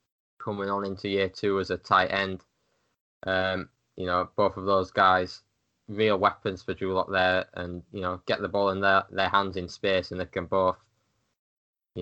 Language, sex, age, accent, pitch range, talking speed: English, male, 10-29, British, 95-105 Hz, 195 wpm